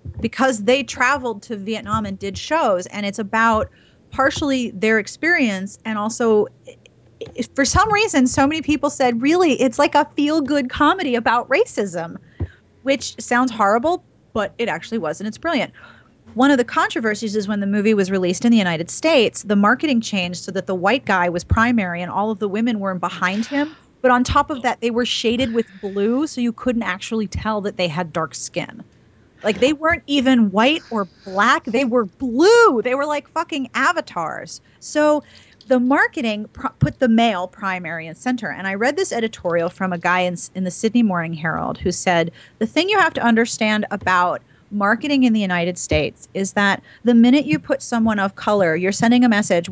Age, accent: 30-49, American